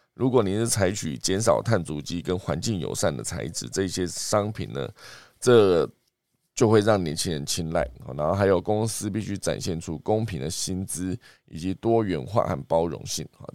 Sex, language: male, Chinese